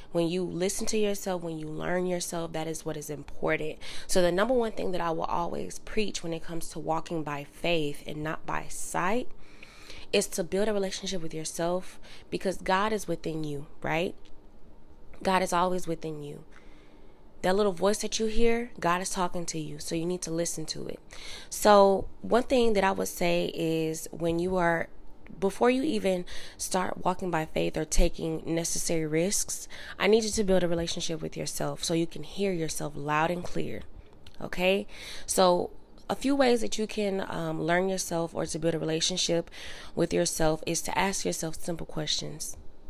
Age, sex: 20-39, female